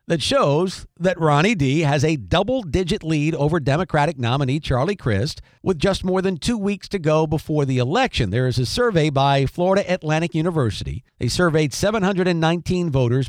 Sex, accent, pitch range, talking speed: male, American, 135-185 Hz, 165 wpm